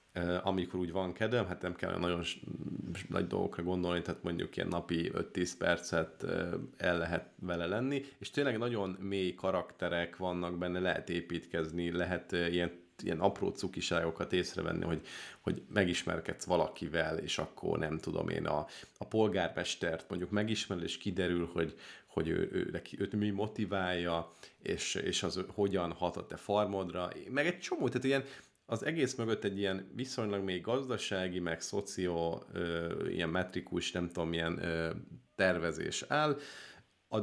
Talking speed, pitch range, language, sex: 160 wpm, 85-110 Hz, Hungarian, male